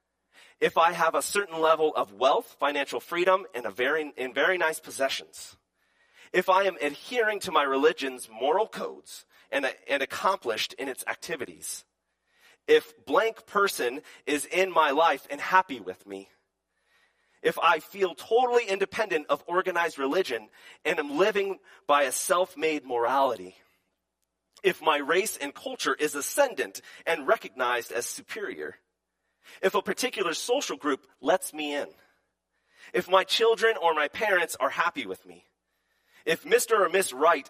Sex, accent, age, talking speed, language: male, American, 30-49, 150 wpm, English